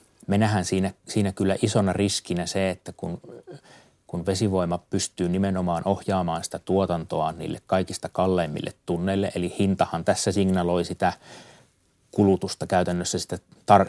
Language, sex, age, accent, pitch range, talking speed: Finnish, male, 30-49, native, 90-100 Hz, 130 wpm